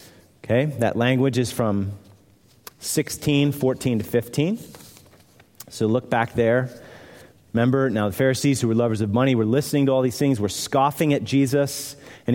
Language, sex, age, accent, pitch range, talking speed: English, male, 30-49, American, 115-170 Hz, 160 wpm